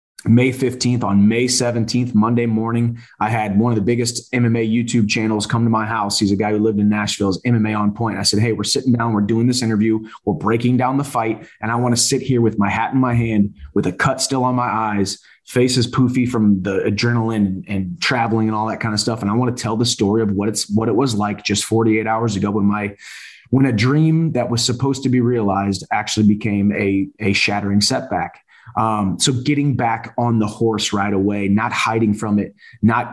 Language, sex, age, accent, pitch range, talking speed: English, male, 30-49, American, 105-120 Hz, 230 wpm